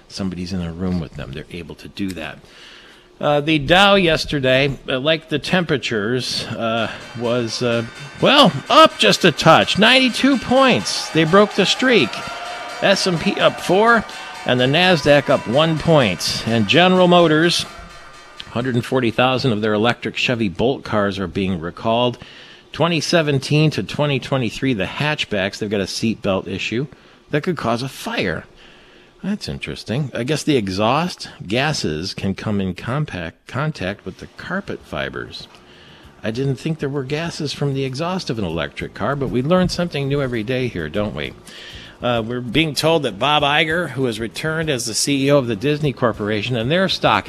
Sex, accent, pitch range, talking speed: male, American, 115-160 Hz, 165 wpm